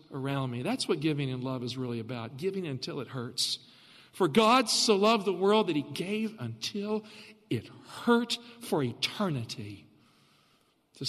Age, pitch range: 50-69, 145-215 Hz